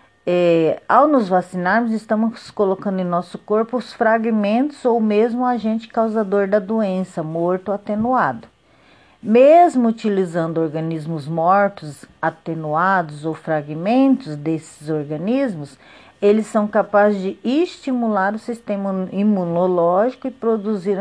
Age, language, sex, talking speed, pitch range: 40-59, Portuguese, female, 110 wpm, 185-245 Hz